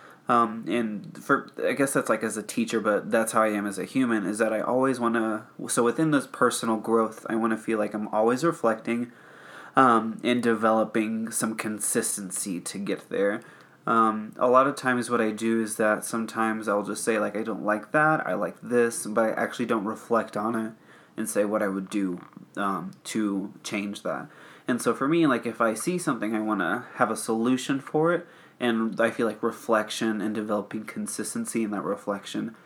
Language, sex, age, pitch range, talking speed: English, male, 20-39, 110-125 Hz, 205 wpm